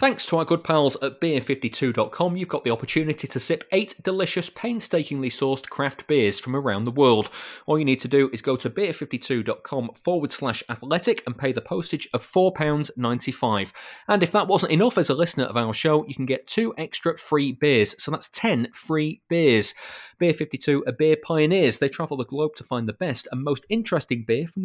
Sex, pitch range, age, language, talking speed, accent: male, 130-170 Hz, 30-49, English, 195 wpm, British